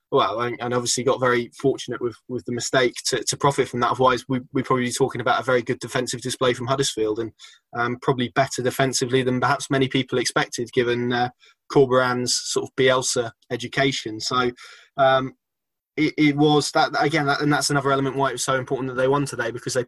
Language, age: English, 20-39